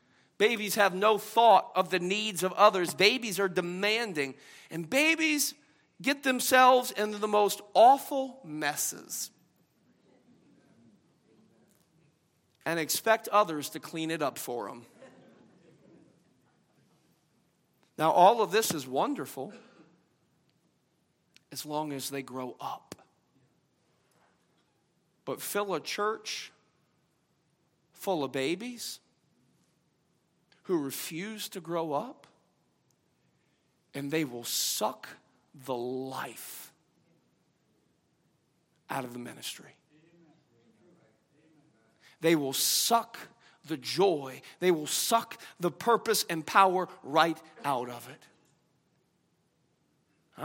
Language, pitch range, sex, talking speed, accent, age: English, 155-220 Hz, male, 95 wpm, American, 40-59